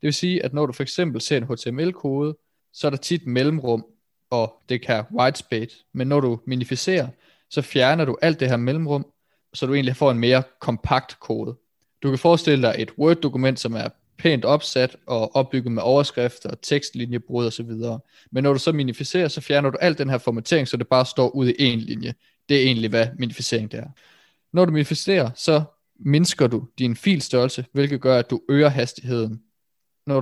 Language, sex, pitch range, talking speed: Danish, male, 120-140 Hz, 195 wpm